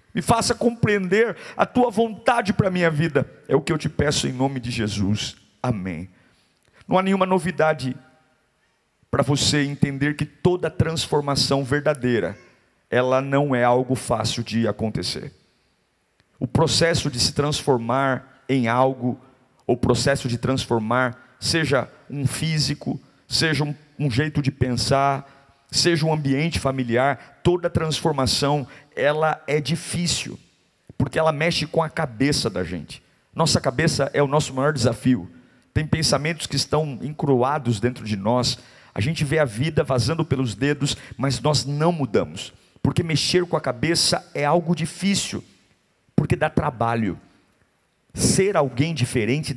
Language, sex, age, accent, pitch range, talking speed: Portuguese, male, 50-69, Brazilian, 125-160 Hz, 140 wpm